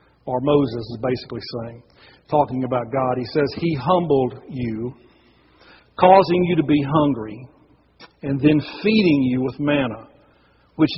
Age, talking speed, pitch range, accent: 50-69, 135 wpm, 130-165 Hz, American